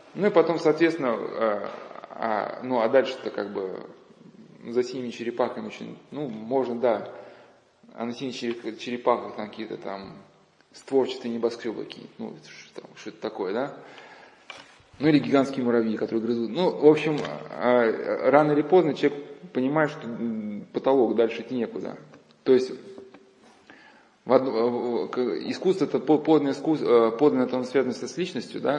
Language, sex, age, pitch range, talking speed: Russian, male, 20-39, 120-150 Hz, 135 wpm